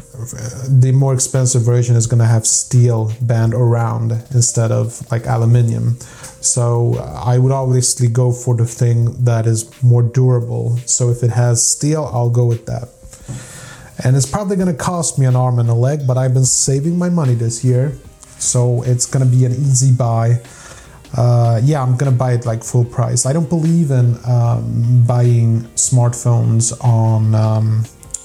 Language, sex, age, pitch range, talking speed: English, male, 30-49, 120-130 Hz, 170 wpm